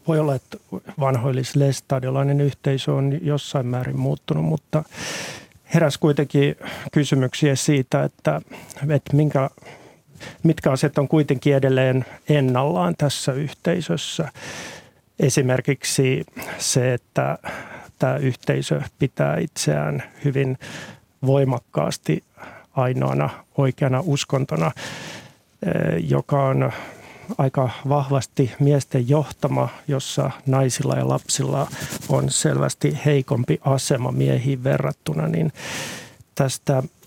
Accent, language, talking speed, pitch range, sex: native, Finnish, 90 wpm, 130-145 Hz, male